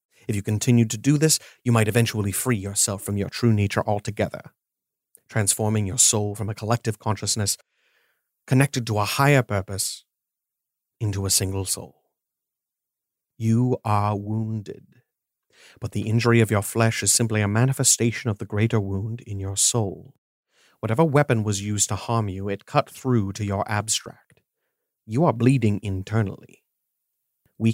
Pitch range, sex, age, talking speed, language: 100-120 Hz, male, 30-49, 150 wpm, English